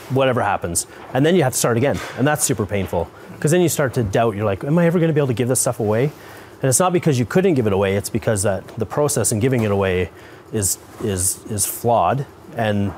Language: English